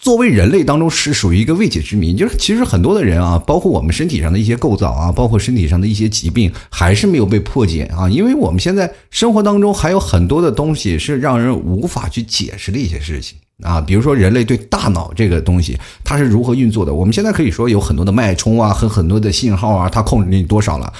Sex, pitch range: male, 90-125 Hz